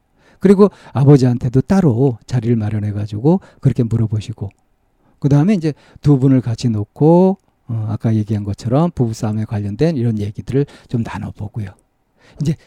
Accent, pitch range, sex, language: native, 115-160 Hz, male, Korean